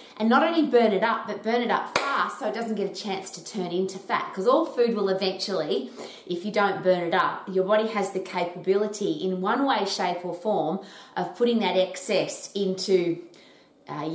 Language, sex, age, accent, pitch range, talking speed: English, female, 30-49, Australian, 175-230 Hz, 210 wpm